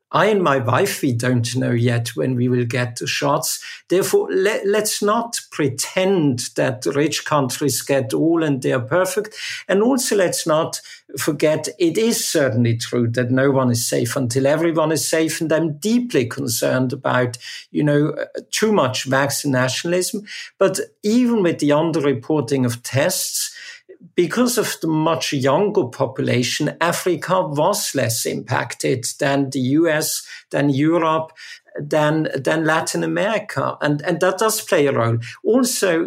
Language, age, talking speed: English, 50-69, 150 wpm